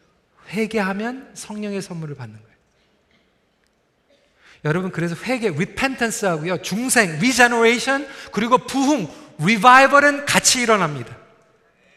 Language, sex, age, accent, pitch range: Korean, male, 40-59, native, 175-260 Hz